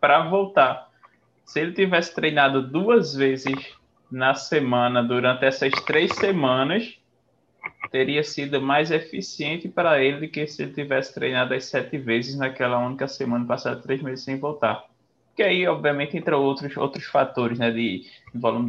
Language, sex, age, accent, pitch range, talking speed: Portuguese, male, 20-39, Brazilian, 120-145 Hz, 155 wpm